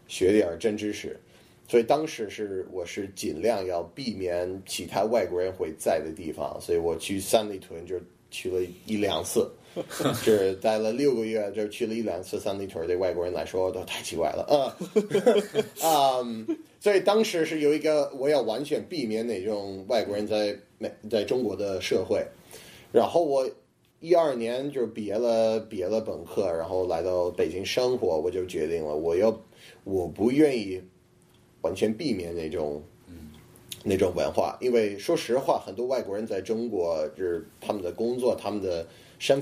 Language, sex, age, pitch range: Chinese, male, 30-49, 95-145 Hz